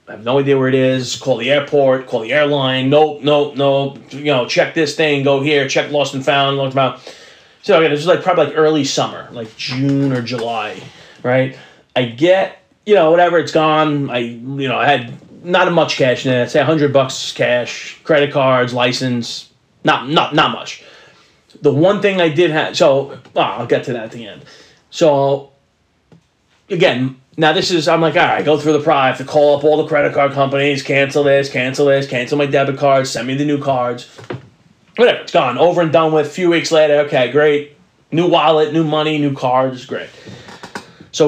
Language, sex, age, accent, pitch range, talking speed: English, male, 30-49, American, 130-155 Hz, 205 wpm